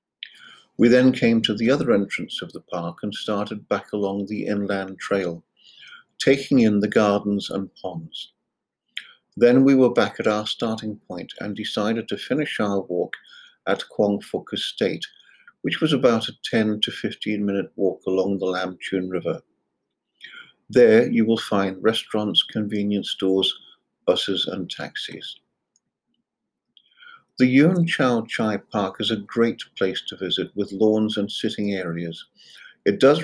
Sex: male